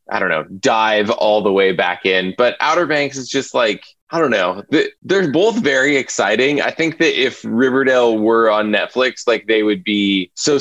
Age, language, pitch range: 20-39, English, 110-140 Hz